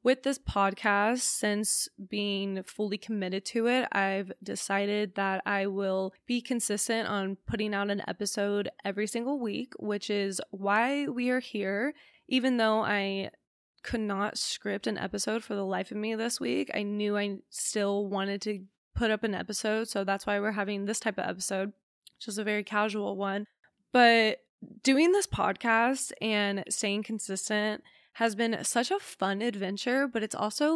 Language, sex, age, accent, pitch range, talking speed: English, female, 20-39, American, 200-240 Hz, 170 wpm